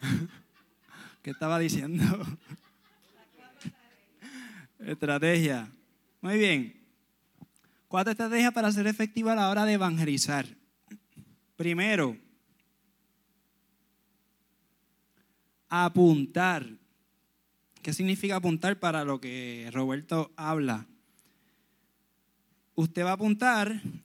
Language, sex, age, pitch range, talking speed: Spanish, male, 20-39, 150-205 Hz, 75 wpm